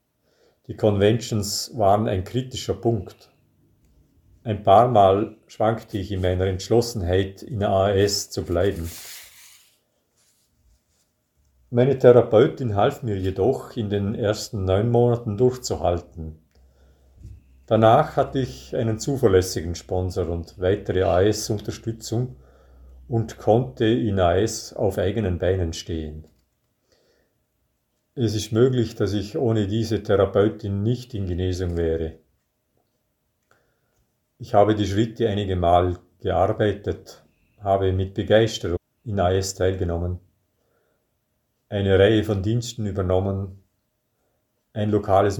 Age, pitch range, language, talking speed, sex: 50-69, 95-115 Hz, English, 105 wpm, male